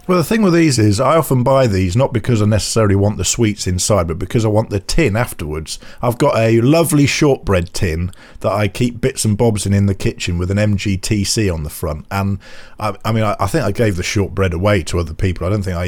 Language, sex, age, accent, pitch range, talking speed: English, male, 50-69, British, 100-130 Hz, 250 wpm